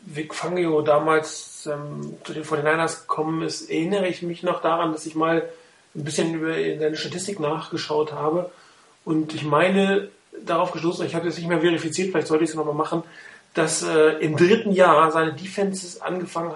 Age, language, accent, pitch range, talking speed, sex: 40-59, German, German, 160-190 Hz, 180 wpm, male